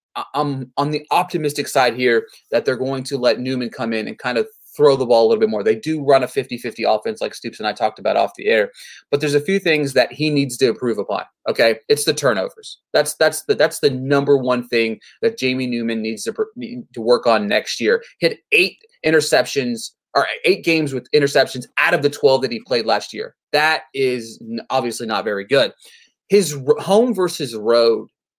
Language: English